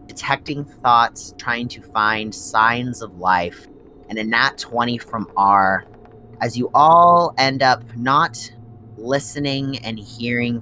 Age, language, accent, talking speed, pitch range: 30-49, English, American, 130 wpm, 110-135 Hz